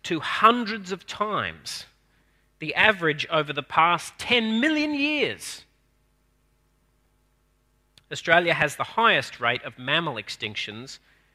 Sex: male